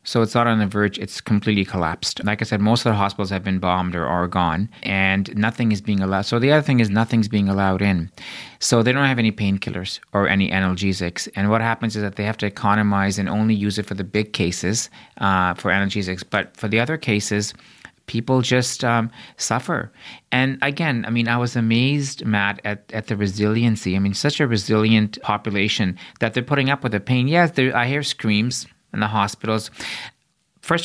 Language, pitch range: English, 100-120 Hz